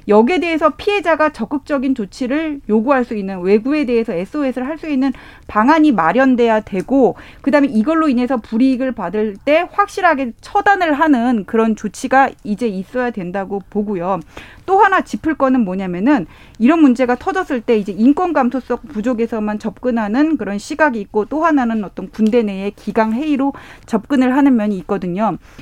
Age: 30-49